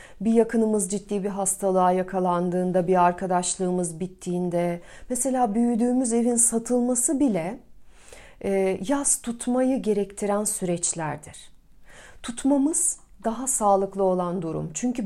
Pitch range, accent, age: 185-230 Hz, native, 40-59